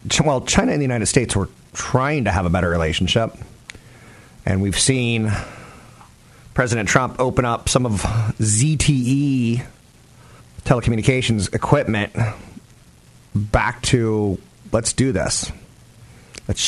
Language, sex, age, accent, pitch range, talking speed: English, male, 40-59, American, 105-130 Hz, 110 wpm